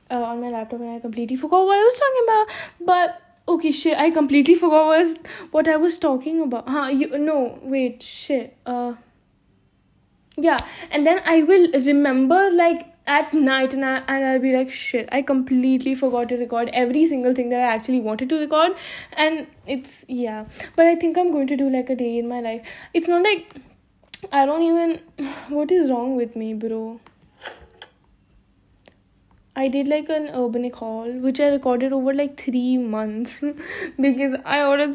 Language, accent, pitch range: English, Indian, 245-310 Hz